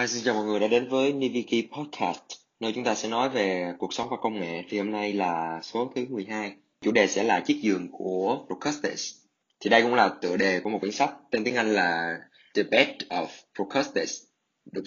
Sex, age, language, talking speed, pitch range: male, 20-39, Vietnamese, 220 wpm, 95-115 Hz